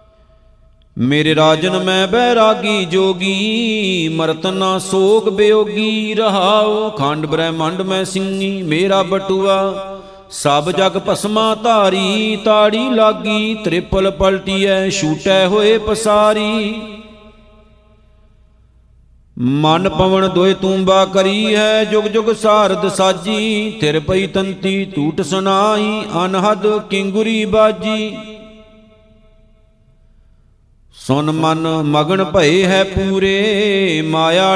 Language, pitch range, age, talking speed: Punjabi, 190-215 Hz, 50-69, 90 wpm